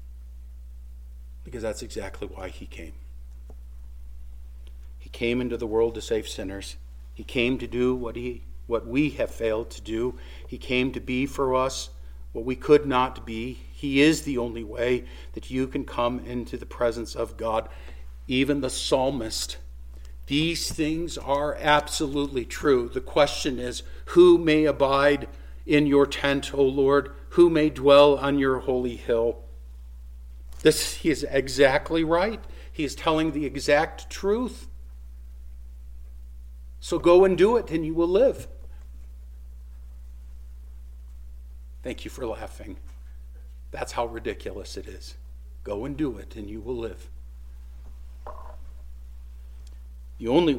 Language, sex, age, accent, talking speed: English, male, 50-69, American, 140 wpm